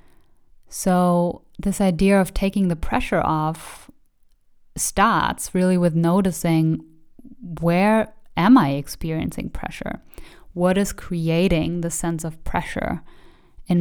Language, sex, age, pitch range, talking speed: English, female, 10-29, 170-200 Hz, 110 wpm